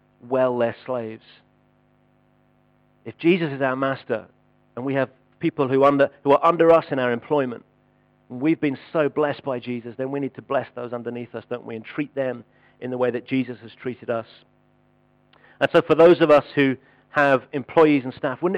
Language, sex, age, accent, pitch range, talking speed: English, male, 50-69, British, 130-155 Hz, 195 wpm